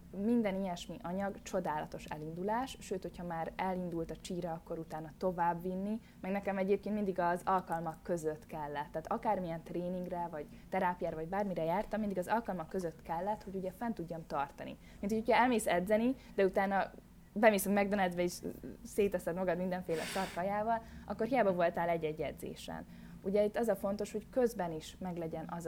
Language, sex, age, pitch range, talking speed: Hungarian, female, 20-39, 160-200 Hz, 160 wpm